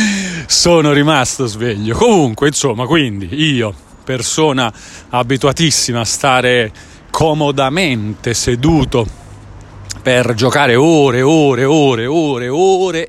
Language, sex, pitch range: Italian, male, 115-155 Hz